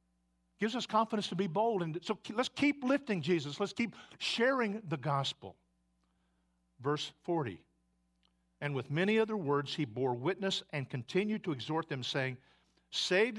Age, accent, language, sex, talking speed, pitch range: 50-69, American, English, male, 150 wpm, 115-185 Hz